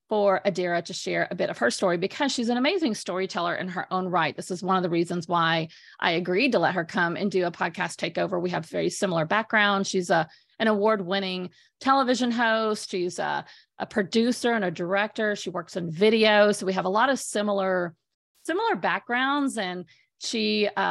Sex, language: female, English